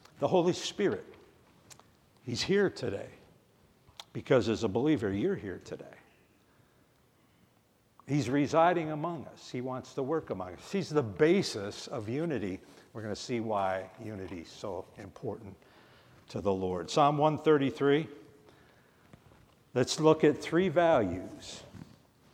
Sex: male